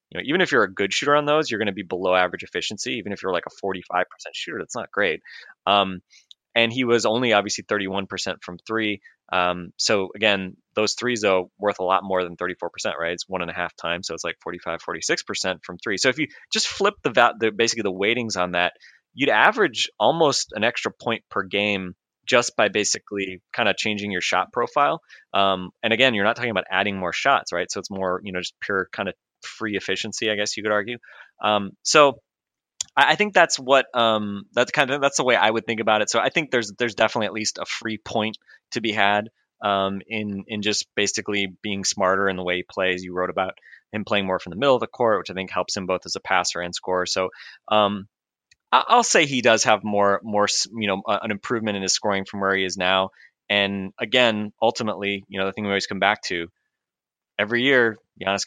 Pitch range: 95-110 Hz